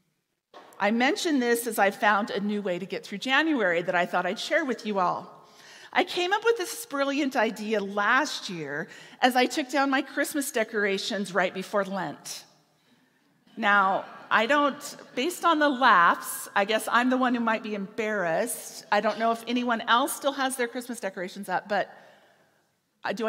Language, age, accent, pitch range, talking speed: English, 40-59, American, 210-285 Hz, 180 wpm